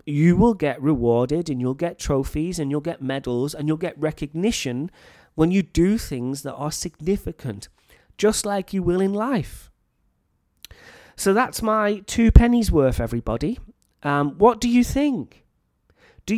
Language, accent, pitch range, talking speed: English, British, 130-185 Hz, 155 wpm